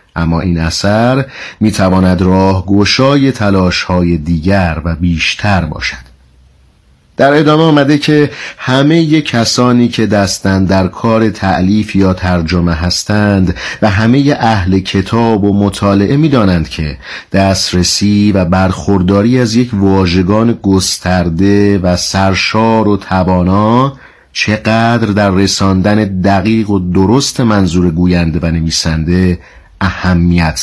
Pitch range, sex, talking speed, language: 90-110 Hz, male, 115 wpm, Persian